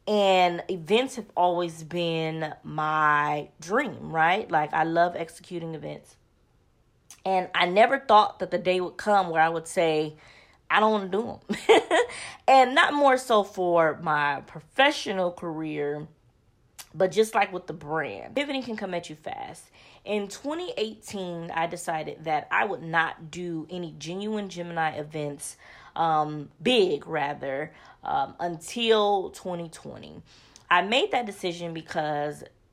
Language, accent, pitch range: English, American, 160-205 Hz